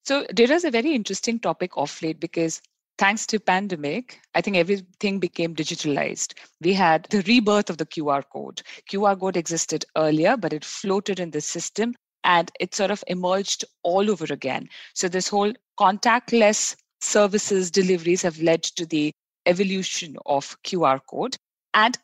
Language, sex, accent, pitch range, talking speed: English, female, Indian, 165-210 Hz, 160 wpm